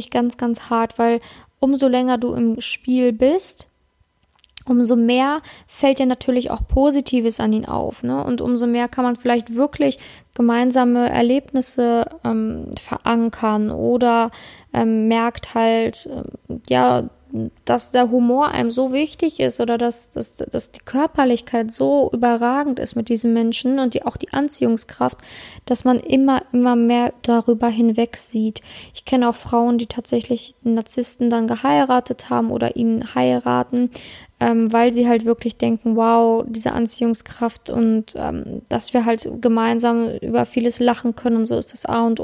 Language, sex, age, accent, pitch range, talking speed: German, female, 20-39, German, 225-245 Hz, 150 wpm